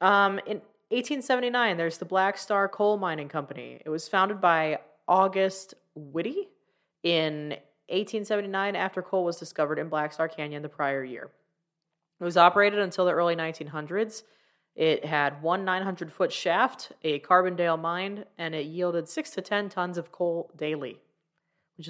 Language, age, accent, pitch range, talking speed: English, 20-39, American, 160-195 Hz, 150 wpm